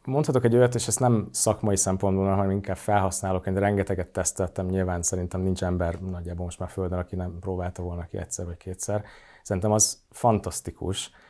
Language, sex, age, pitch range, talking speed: Hungarian, male, 30-49, 90-105 Hz, 170 wpm